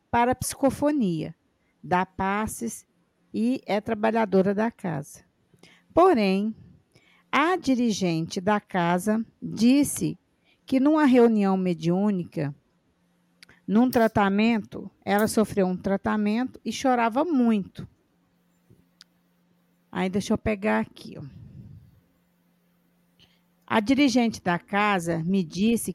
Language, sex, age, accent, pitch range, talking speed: Portuguese, female, 50-69, Brazilian, 190-245 Hz, 95 wpm